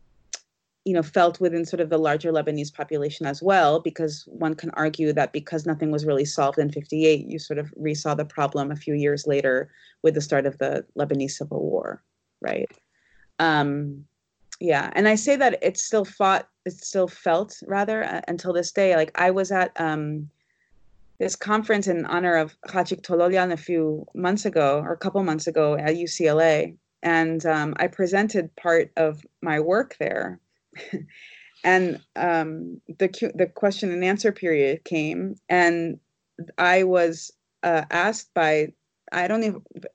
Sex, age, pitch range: female, 30-49, 155-185 Hz